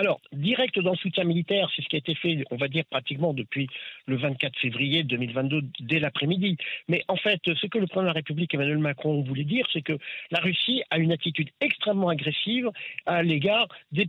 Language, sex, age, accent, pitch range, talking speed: French, male, 50-69, French, 155-190 Hz, 210 wpm